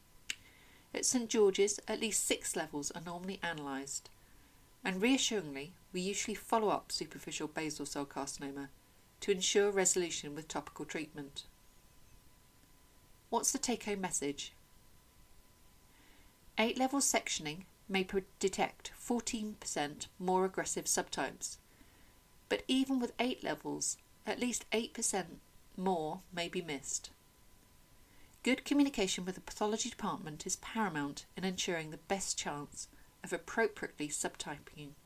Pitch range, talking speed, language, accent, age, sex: 145-205 Hz, 115 wpm, English, British, 40-59, female